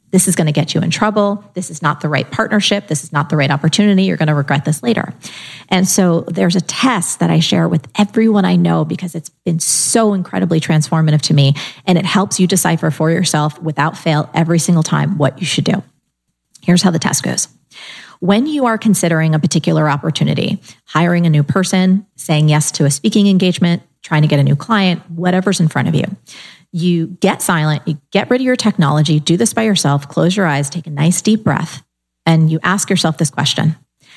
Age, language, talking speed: 30-49, English, 215 wpm